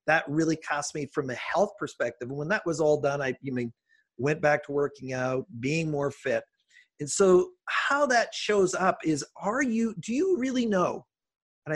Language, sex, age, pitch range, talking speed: English, male, 40-59, 140-190 Hz, 200 wpm